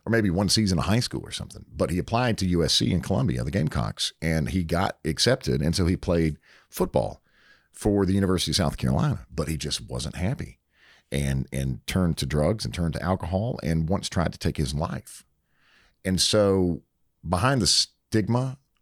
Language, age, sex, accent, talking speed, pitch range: English, 50-69, male, American, 190 wpm, 80-105 Hz